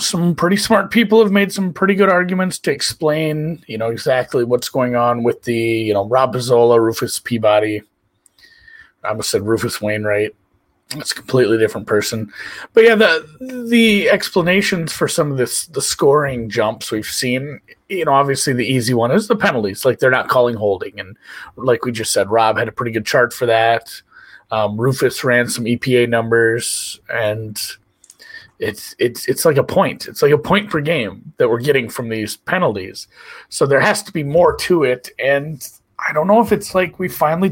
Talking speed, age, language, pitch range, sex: 190 wpm, 30-49, English, 115-185 Hz, male